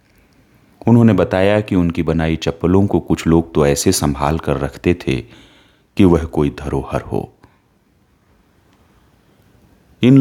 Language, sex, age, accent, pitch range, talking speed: Hindi, male, 40-59, native, 75-100 Hz, 125 wpm